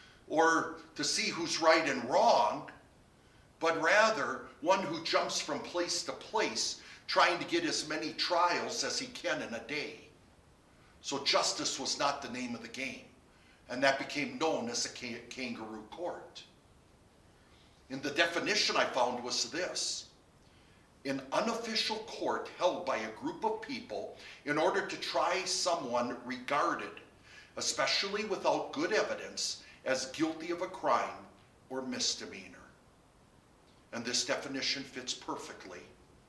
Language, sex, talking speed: English, male, 135 wpm